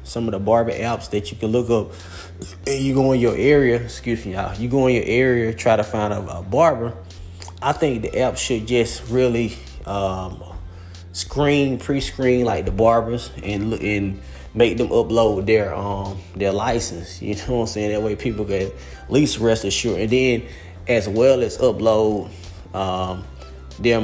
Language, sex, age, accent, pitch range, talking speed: English, male, 20-39, American, 90-120 Hz, 180 wpm